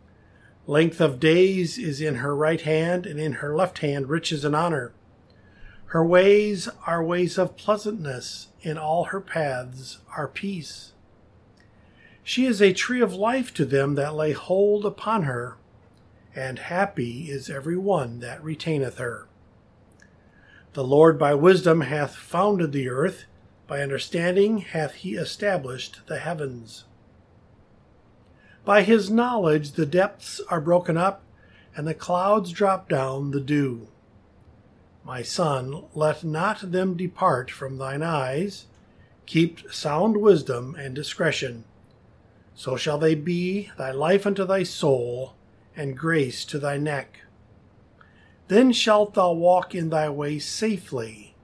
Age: 50-69